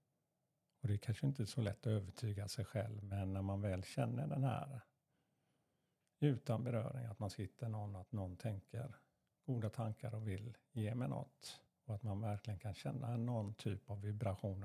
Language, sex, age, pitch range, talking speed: Swedish, male, 50-69, 105-145 Hz, 185 wpm